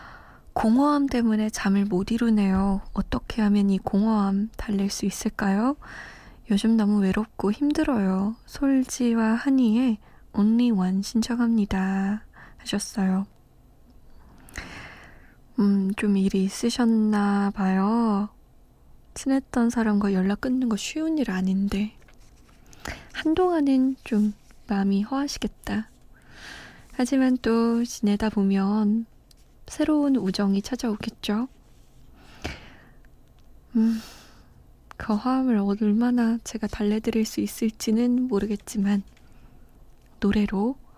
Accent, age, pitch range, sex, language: native, 20-39, 200-245 Hz, female, Korean